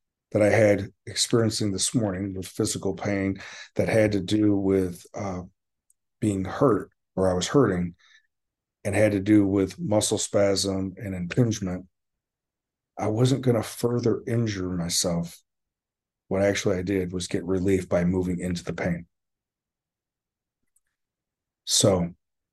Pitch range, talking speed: 95-110 Hz, 135 wpm